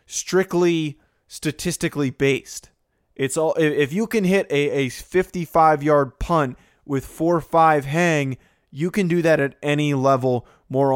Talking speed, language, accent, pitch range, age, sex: 150 wpm, English, American, 140-165 Hz, 20-39, male